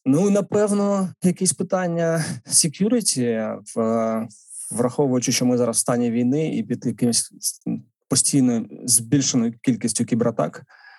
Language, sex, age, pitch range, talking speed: Ukrainian, male, 20-39, 115-145 Hz, 110 wpm